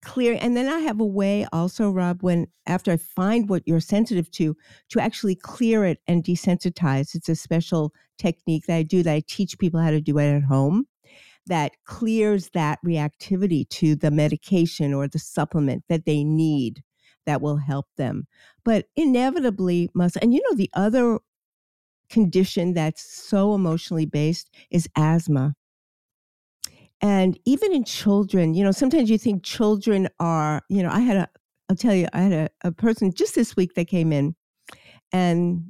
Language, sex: English, female